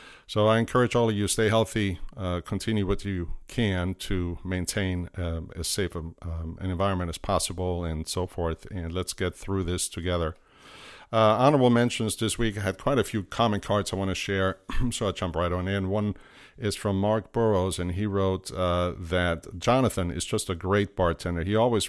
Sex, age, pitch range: male, 50-69, 90-110 Hz